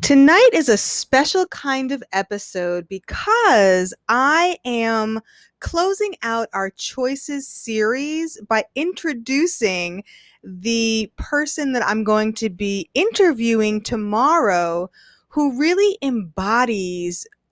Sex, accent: female, American